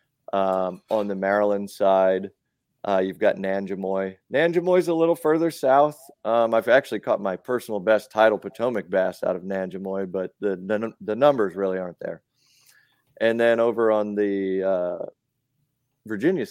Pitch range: 95-115 Hz